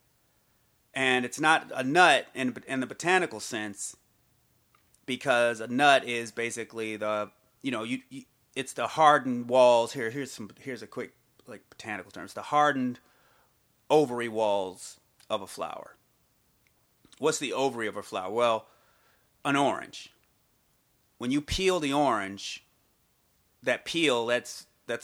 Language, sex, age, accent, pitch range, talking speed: English, male, 30-49, American, 110-135 Hz, 140 wpm